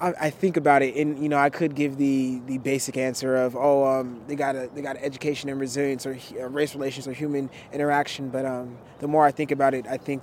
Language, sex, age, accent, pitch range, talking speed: English, male, 20-39, American, 130-150 Hz, 250 wpm